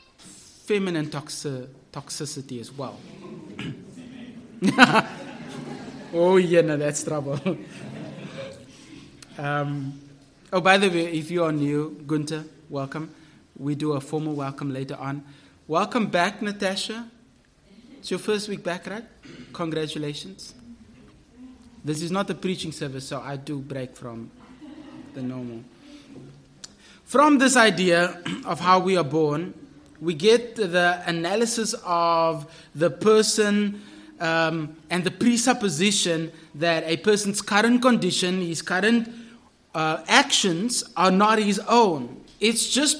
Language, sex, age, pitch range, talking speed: English, male, 30-49, 155-230 Hz, 120 wpm